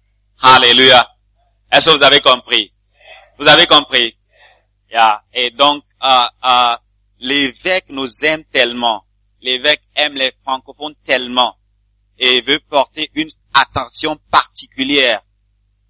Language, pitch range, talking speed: English, 100-145 Hz, 110 wpm